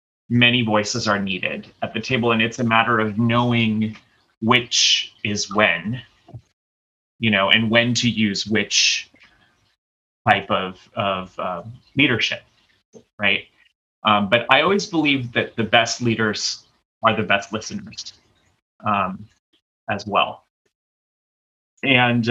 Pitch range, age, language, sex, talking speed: 105-120 Hz, 30-49, English, male, 125 wpm